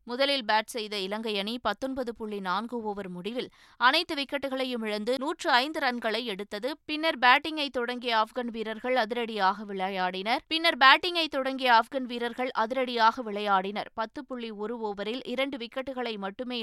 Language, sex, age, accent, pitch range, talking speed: Tamil, female, 20-39, native, 210-260 Hz, 125 wpm